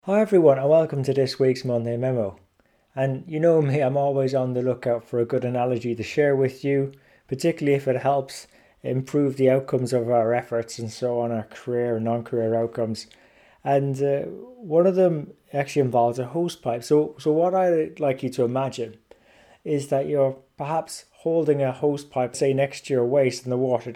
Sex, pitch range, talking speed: male, 125-150 Hz, 195 wpm